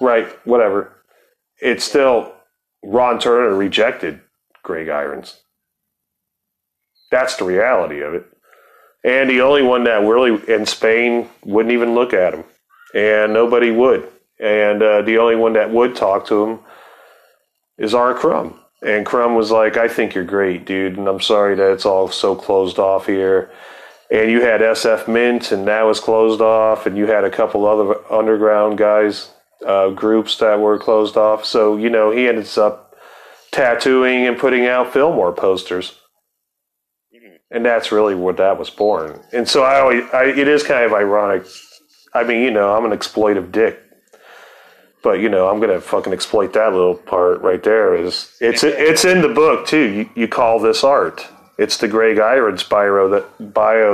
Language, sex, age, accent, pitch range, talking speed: English, male, 30-49, American, 105-120 Hz, 170 wpm